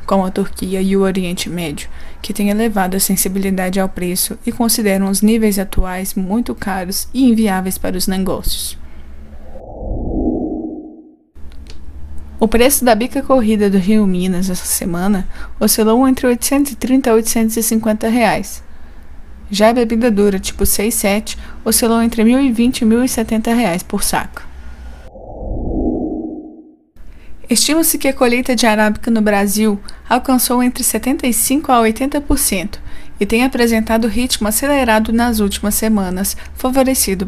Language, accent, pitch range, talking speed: Portuguese, Brazilian, 190-250 Hz, 130 wpm